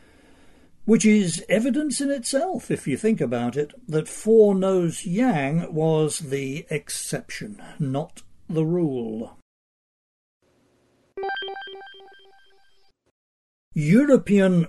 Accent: British